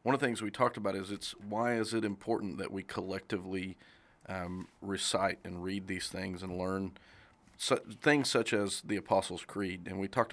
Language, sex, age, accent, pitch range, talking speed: English, male, 40-59, American, 95-110 Hz, 200 wpm